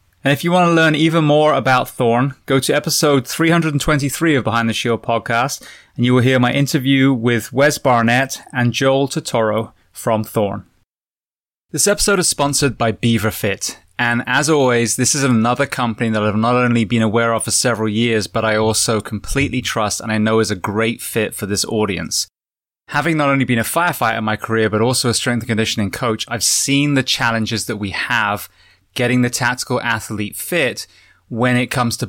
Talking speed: 195 wpm